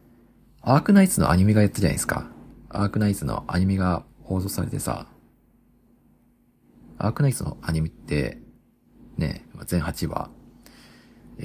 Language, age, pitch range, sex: Japanese, 40-59, 90-145 Hz, male